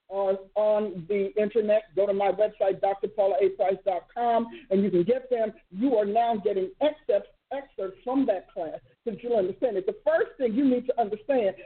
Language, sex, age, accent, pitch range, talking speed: English, male, 50-69, American, 210-285 Hz, 180 wpm